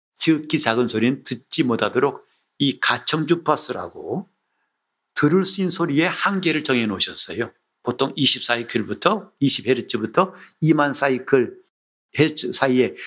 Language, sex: Korean, male